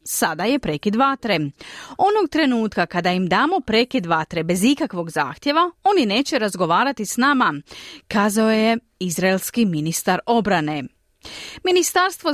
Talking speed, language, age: 120 wpm, Croatian, 30-49